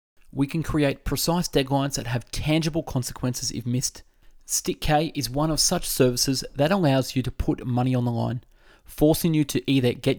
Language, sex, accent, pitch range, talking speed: English, male, Australian, 125-160 Hz, 190 wpm